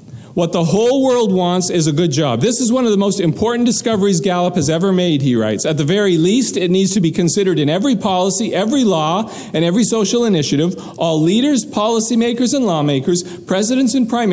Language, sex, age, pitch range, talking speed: English, male, 50-69, 160-220 Hz, 205 wpm